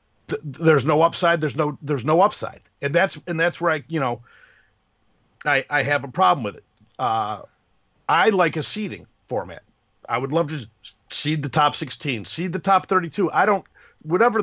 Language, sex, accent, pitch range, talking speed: English, male, American, 130-170 Hz, 185 wpm